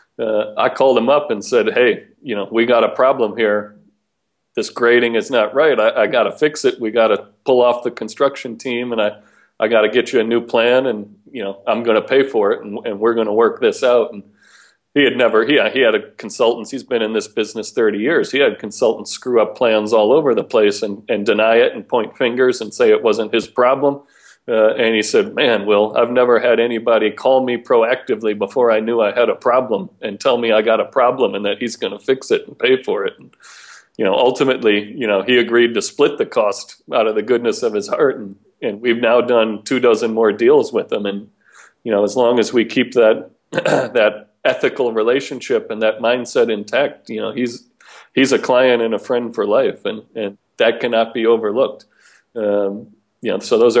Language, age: English, 40-59